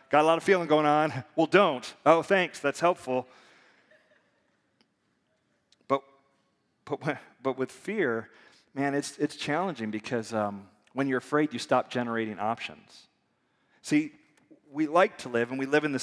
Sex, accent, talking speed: male, American, 155 wpm